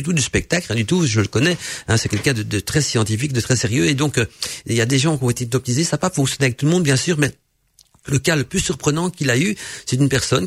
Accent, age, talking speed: French, 50-69, 305 wpm